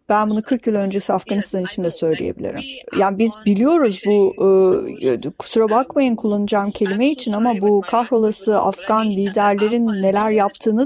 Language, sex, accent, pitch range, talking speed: Turkish, female, native, 190-225 Hz, 135 wpm